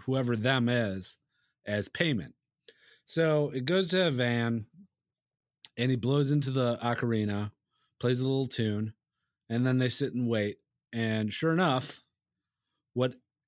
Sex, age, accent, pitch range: male, 30-49, American, 110-135 Hz